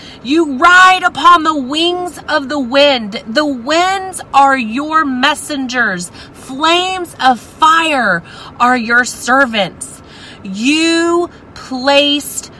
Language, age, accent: English, 30-49, American